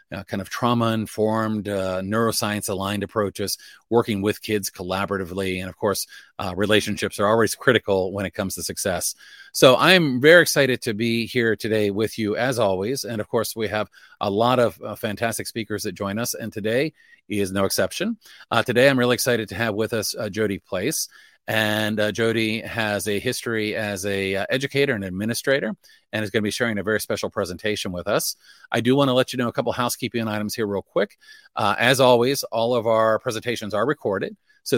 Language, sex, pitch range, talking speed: English, male, 105-125 Hz, 200 wpm